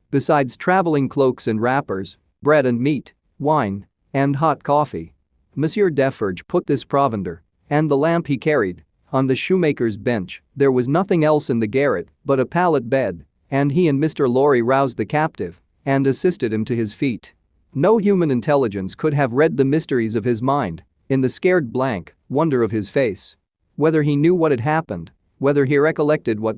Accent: American